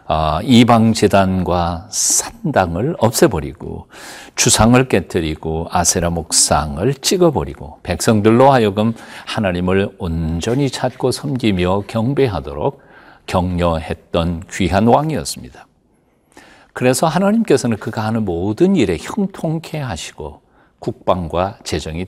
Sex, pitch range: male, 85-130 Hz